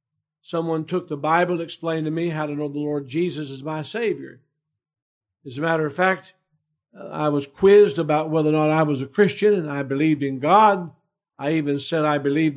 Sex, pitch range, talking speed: male, 145-185 Hz, 205 wpm